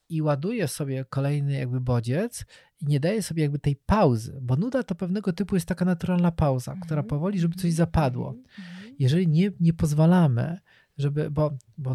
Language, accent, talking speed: Polish, native, 170 wpm